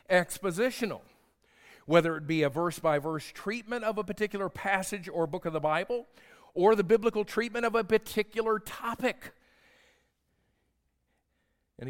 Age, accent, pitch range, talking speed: 50-69, American, 130-195 Hz, 125 wpm